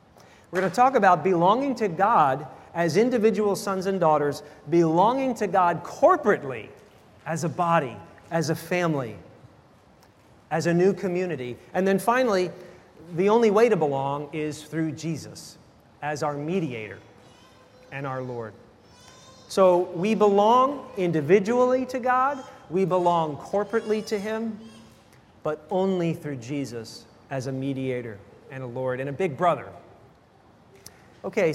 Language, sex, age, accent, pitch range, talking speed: English, male, 40-59, American, 140-205 Hz, 130 wpm